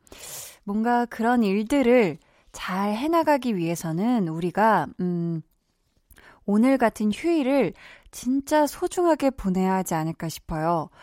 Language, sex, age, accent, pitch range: Korean, female, 20-39, native, 185-265 Hz